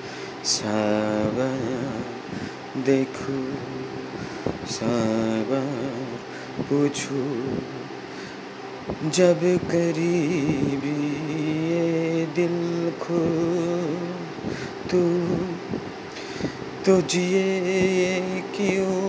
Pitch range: 115-165 Hz